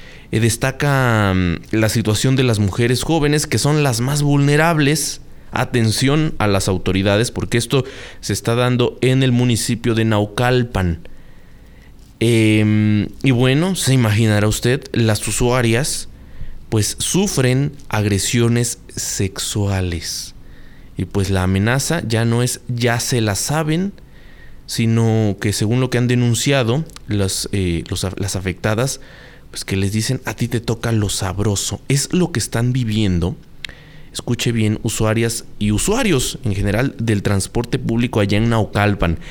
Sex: male